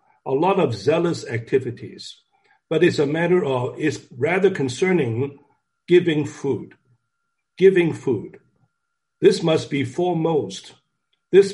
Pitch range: 140-195 Hz